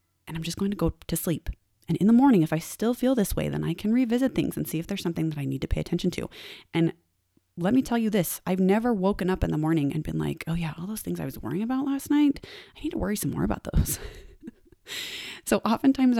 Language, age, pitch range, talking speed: English, 30-49, 140-195 Hz, 265 wpm